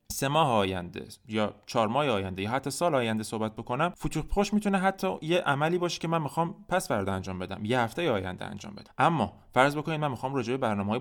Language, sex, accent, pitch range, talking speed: French, male, Turkish, 105-135 Hz, 205 wpm